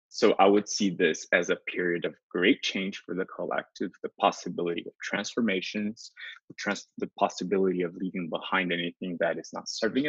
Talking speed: 165 wpm